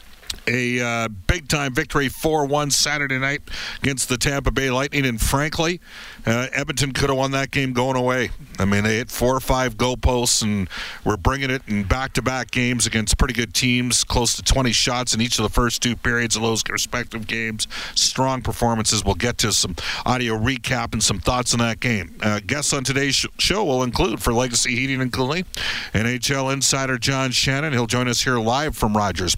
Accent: American